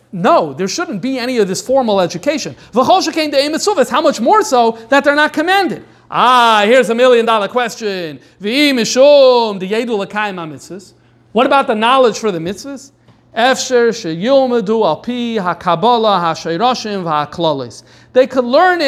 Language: English